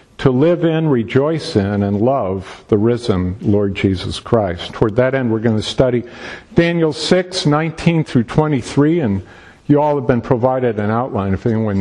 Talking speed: 175 wpm